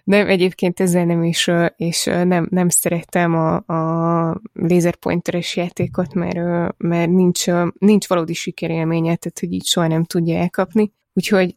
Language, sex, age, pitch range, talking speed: Hungarian, female, 20-39, 170-190 Hz, 140 wpm